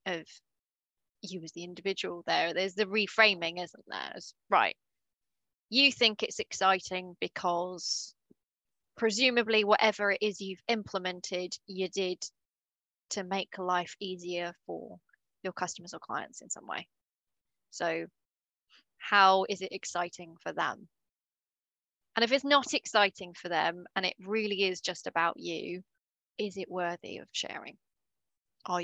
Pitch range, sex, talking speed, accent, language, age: 175-210 Hz, female, 135 wpm, British, English, 20-39